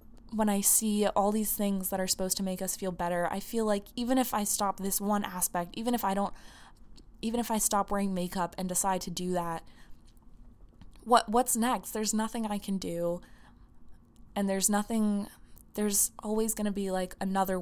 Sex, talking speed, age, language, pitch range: female, 195 wpm, 20-39, English, 175-210 Hz